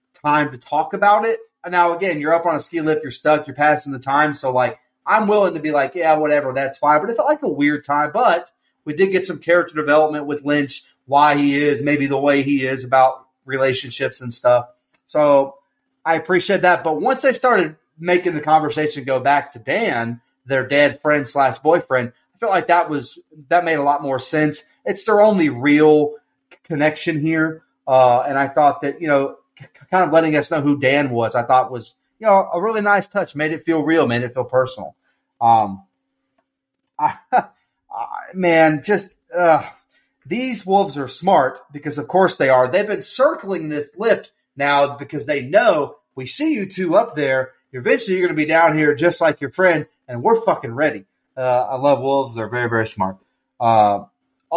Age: 30-49